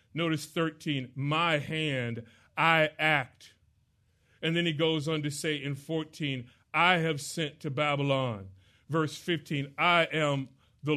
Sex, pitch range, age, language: male, 130-160 Hz, 40-59, English